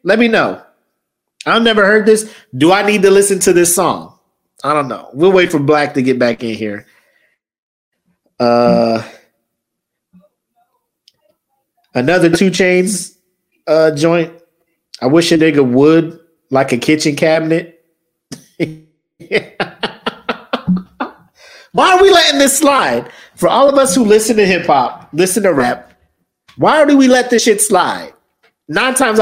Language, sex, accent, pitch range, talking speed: English, male, American, 135-215 Hz, 140 wpm